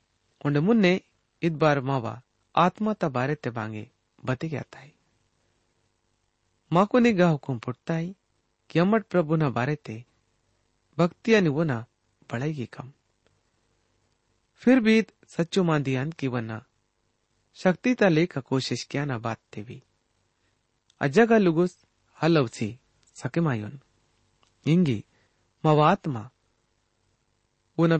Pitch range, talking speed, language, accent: 115-170 Hz, 100 wpm, English, Indian